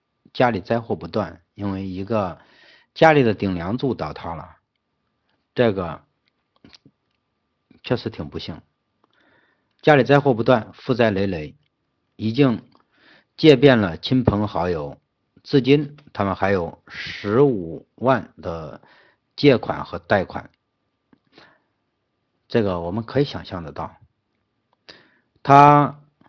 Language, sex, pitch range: Chinese, male, 95-125 Hz